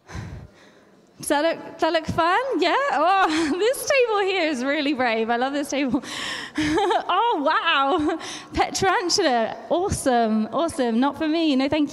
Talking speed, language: 135 wpm, English